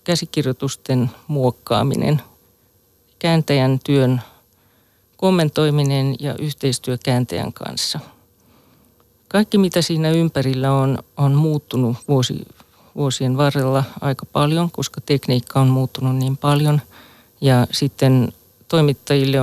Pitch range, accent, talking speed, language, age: 125-140 Hz, native, 85 wpm, Finnish, 40-59